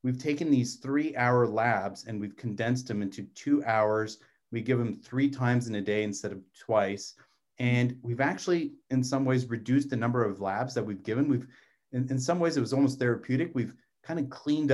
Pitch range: 105-130 Hz